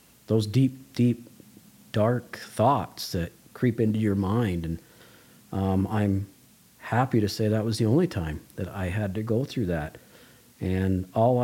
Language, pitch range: English, 95-110 Hz